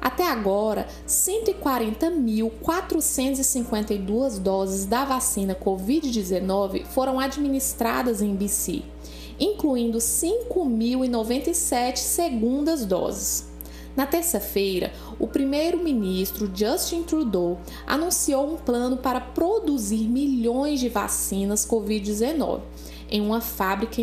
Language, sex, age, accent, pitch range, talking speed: Portuguese, female, 20-39, Brazilian, 200-270 Hz, 80 wpm